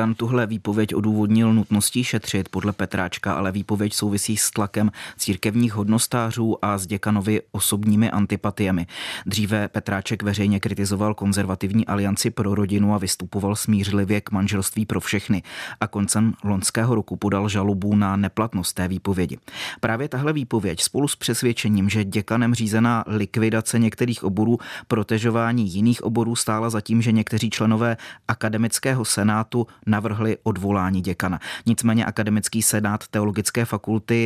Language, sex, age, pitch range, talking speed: Czech, male, 30-49, 100-115 Hz, 130 wpm